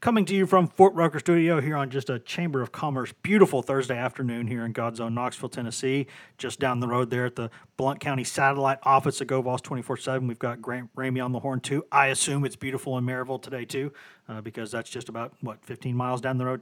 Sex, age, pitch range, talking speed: male, 30-49, 125-150 Hz, 235 wpm